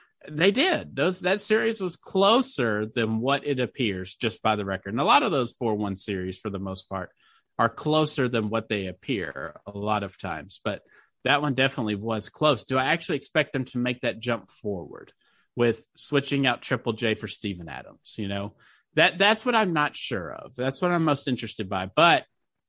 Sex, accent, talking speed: male, American, 205 wpm